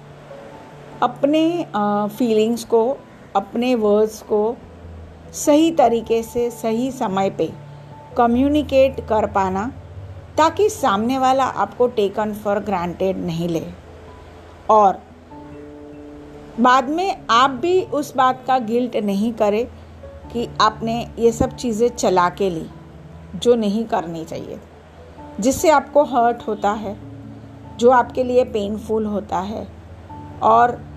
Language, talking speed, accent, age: Hindi, 115 wpm, native, 50-69